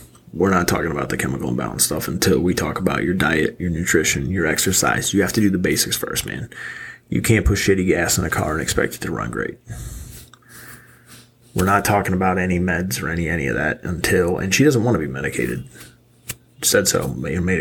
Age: 30-49